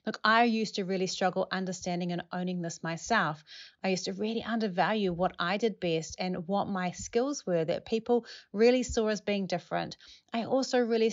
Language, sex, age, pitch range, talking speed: English, female, 30-49, 170-210 Hz, 190 wpm